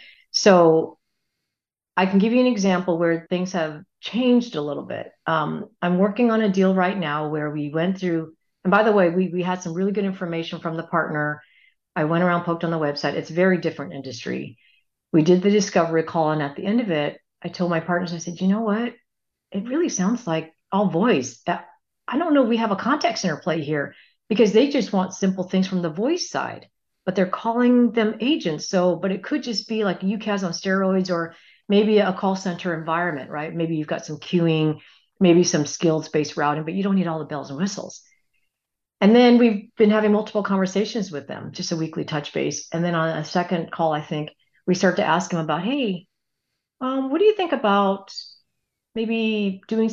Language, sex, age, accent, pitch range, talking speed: English, female, 50-69, American, 165-210 Hz, 210 wpm